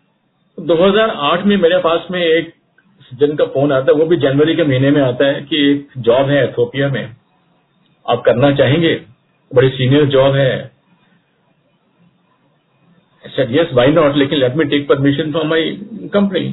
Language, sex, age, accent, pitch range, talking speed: Hindi, male, 50-69, native, 135-180 Hz, 155 wpm